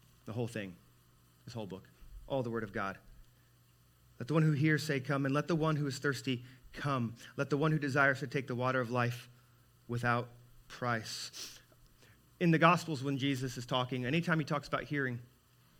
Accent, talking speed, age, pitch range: American, 195 wpm, 30-49, 115-150 Hz